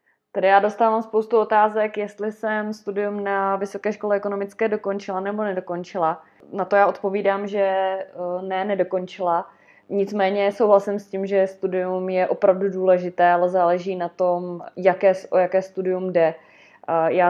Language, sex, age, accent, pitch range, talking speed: Czech, female, 20-39, native, 170-195 Hz, 140 wpm